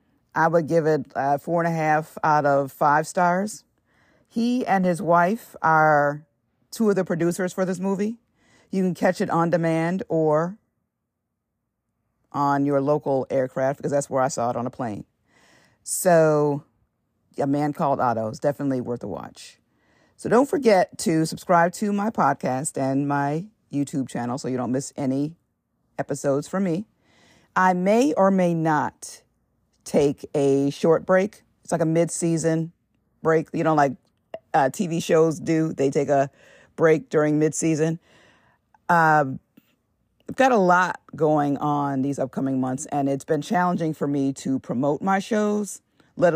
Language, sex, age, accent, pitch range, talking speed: English, female, 50-69, American, 140-180 Hz, 160 wpm